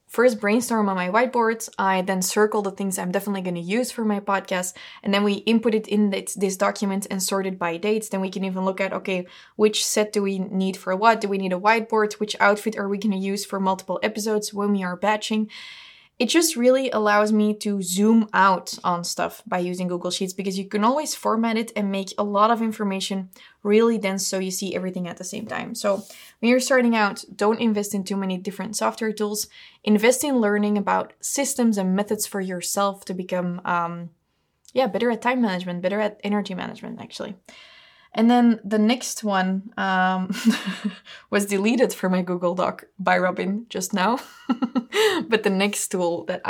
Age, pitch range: 20-39, 190-220 Hz